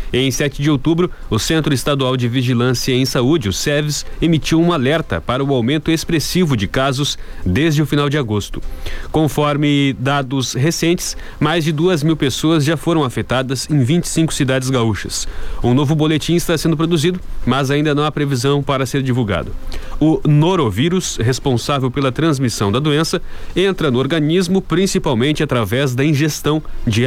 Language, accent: Portuguese, Brazilian